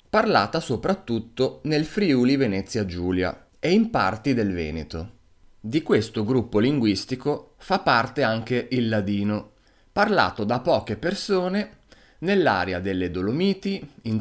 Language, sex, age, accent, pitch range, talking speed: Italian, male, 30-49, native, 95-140 Hz, 120 wpm